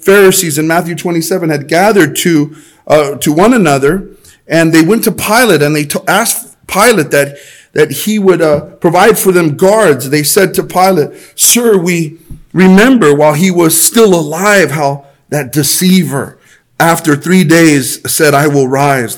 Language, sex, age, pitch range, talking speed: English, male, 40-59, 140-175 Hz, 165 wpm